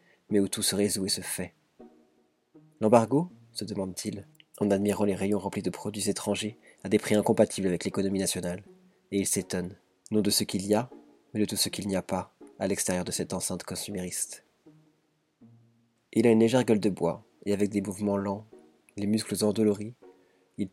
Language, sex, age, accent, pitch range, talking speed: French, male, 20-39, French, 100-115 Hz, 190 wpm